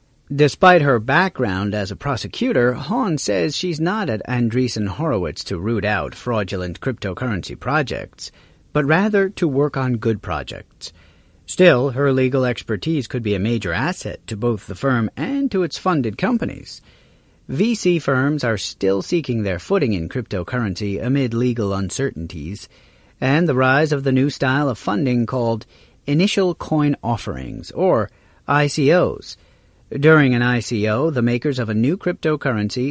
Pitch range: 105-145 Hz